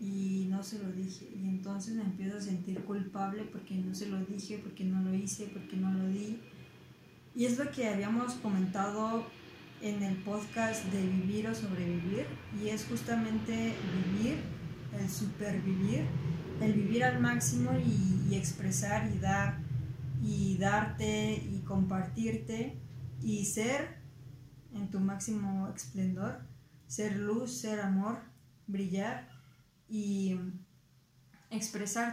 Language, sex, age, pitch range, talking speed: Spanish, female, 20-39, 190-220 Hz, 130 wpm